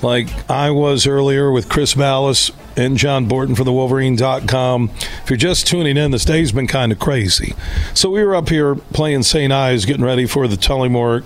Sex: male